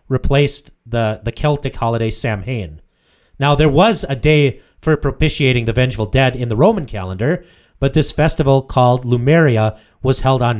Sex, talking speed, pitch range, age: male, 160 wpm, 110-145 Hz, 30-49